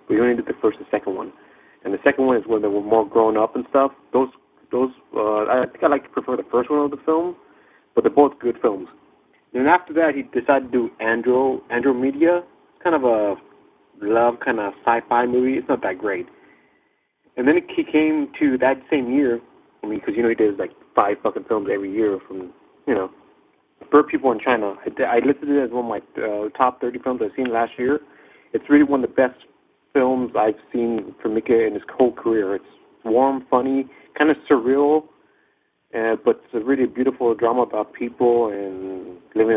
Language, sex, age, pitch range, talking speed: English, male, 30-49, 115-140 Hz, 210 wpm